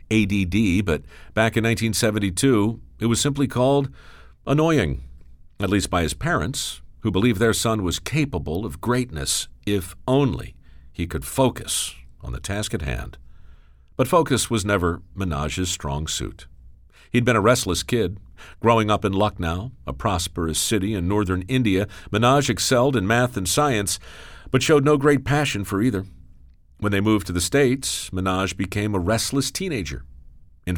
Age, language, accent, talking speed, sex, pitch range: 50-69, English, American, 155 wpm, male, 80-120 Hz